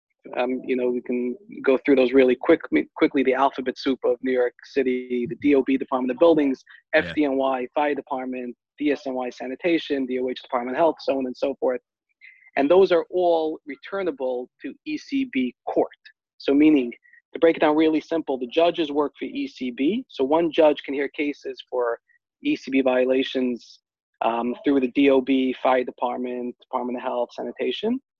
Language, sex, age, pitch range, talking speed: English, male, 30-49, 130-170 Hz, 160 wpm